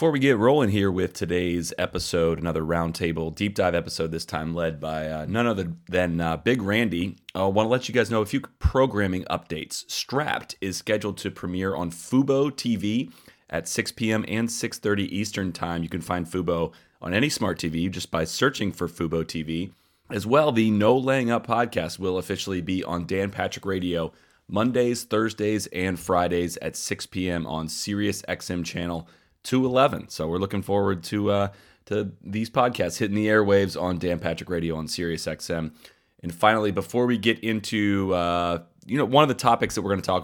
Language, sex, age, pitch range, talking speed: English, male, 30-49, 85-110 Hz, 190 wpm